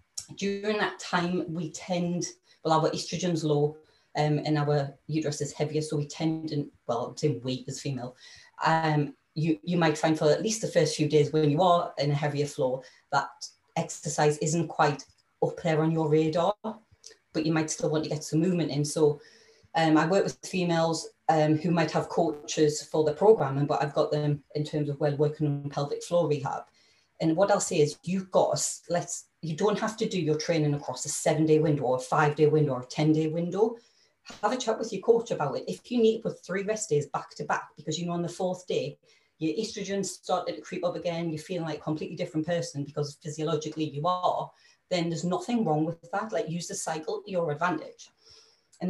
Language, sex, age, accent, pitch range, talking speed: English, female, 30-49, British, 150-175 Hz, 210 wpm